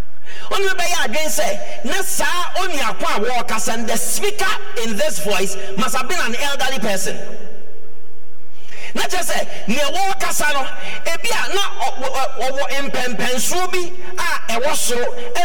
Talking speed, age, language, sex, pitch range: 125 wpm, 50-69, English, male, 210-355 Hz